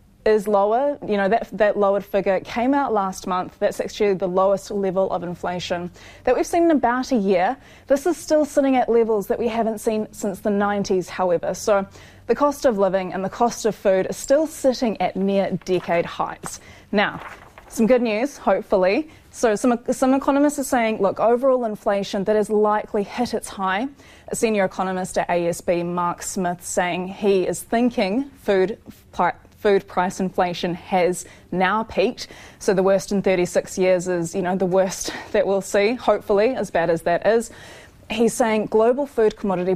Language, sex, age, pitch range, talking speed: English, female, 20-39, 185-230 Hz, 185 wpm